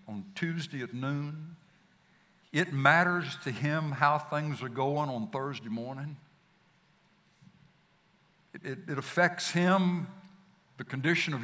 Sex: male